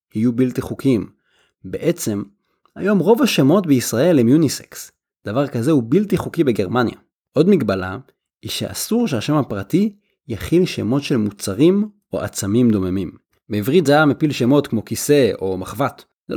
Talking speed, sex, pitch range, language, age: 145 wpm, male, 110-160 Hz, Hebrew, 30-49